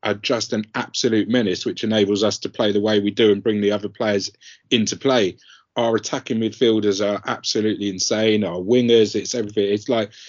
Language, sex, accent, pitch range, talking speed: English, male, British, 105-130 Hz, 195 wpm